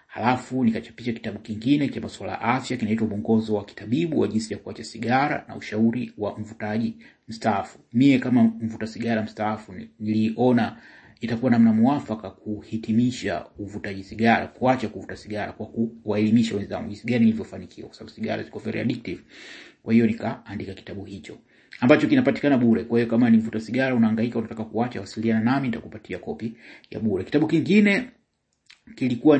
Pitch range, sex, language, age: 110-130 Hz, male, English, 30-49